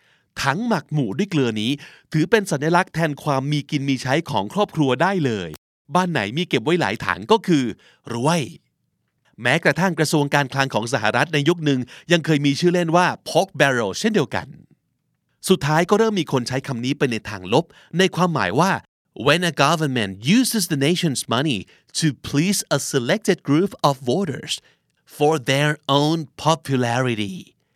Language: Thai